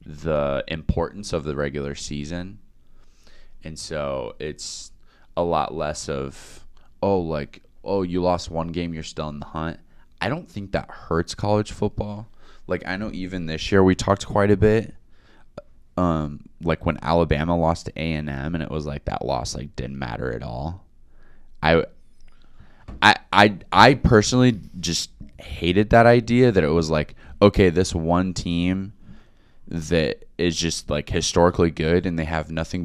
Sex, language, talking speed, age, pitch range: male, English, 165 wpm, 20-39, 80-100 Hz